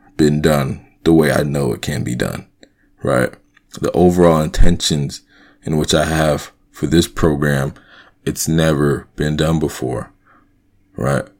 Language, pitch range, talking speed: English, 75-85 Hz, 140 wpm